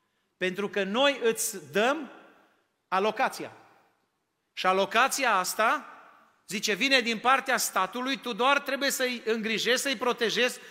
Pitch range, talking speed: 200-250 Hz, 130 wpm